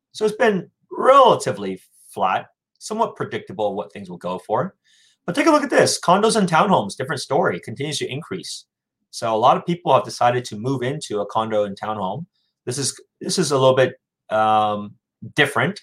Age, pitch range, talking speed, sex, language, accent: 30-49, 110-145 Hz, 185 wpm, male, English, American